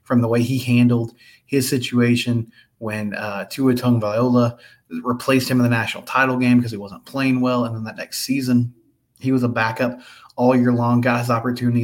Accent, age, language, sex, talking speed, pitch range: American, 20-39, English, male, 200 wpm, 115-130 Hz